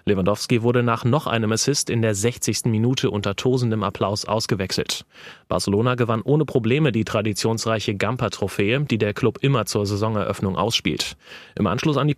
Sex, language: male, German